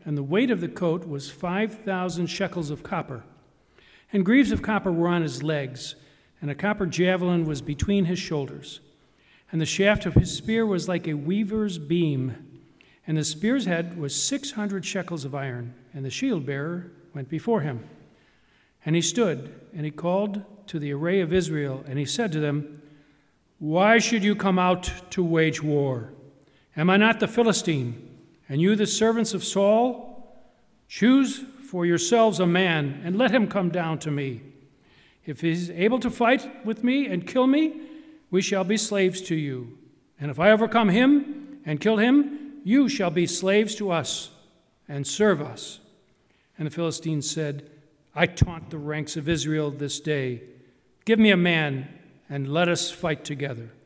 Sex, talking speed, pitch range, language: male, 175 wpm, 150-210 Hz, English